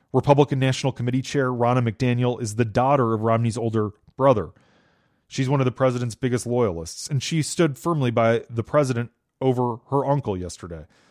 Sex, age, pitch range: male, 30-49, 110-135 Hz